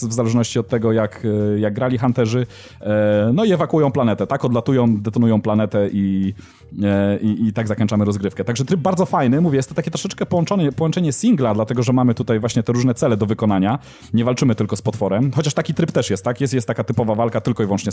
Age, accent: 30-49, native